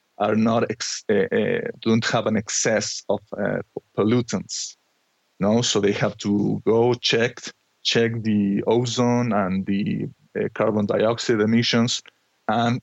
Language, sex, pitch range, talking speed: English, male, 105-125 Hz, 135 wpm